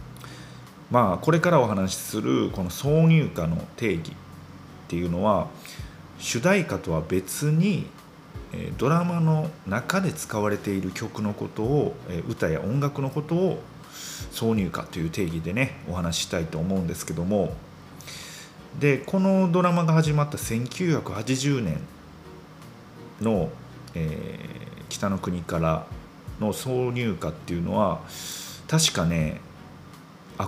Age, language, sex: 30-49, Japanese, male